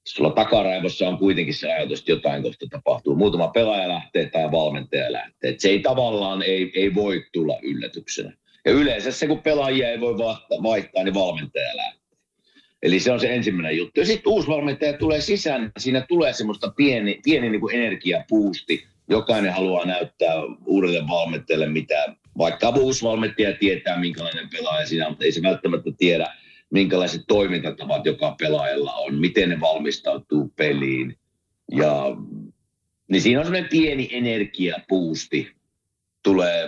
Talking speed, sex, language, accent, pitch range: 145 wpm, male, Finnish, native, 95-150 Hz